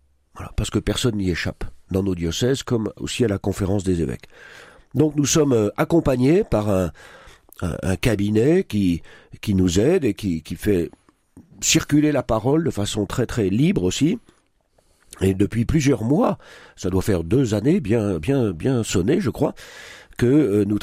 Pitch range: 95-130 Hz